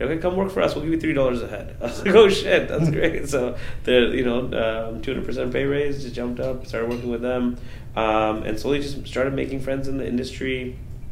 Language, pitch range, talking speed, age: English, 110-125 Hz, 225 wpm, 20-39